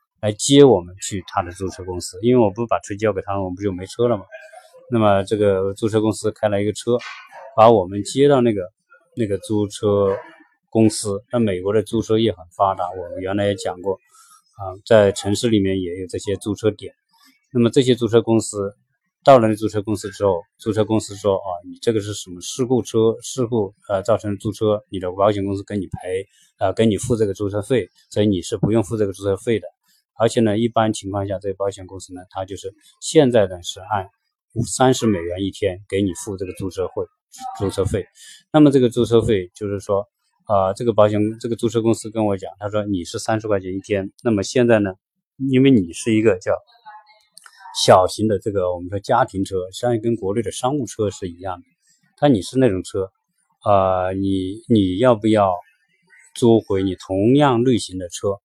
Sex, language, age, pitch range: male, Chinese, 20-39, 100-120 Hz